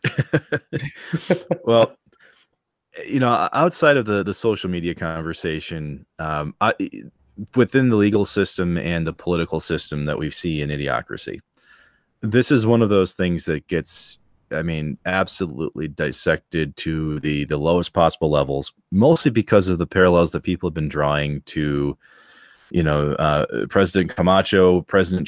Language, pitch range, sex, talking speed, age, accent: English, 80-105 Hz, male, 140 wpm, 30-49, American